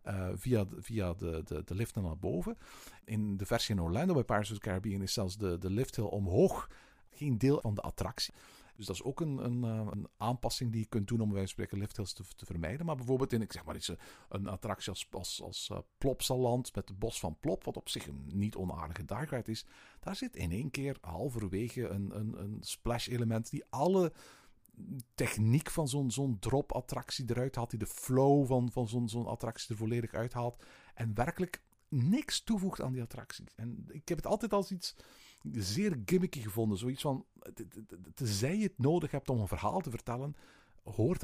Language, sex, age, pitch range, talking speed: Dutch, male, 50-69, 105-135 Hz, 195 wpm